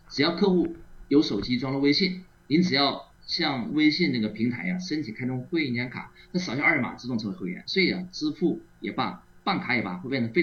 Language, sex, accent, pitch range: Chinese, male, native, 105-170 Hz